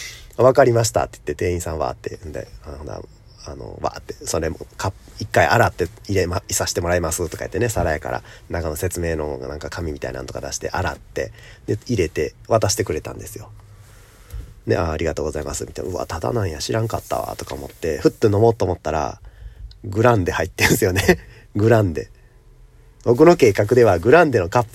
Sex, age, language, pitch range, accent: male, 40-59, Japanese, 90-115 Hz, native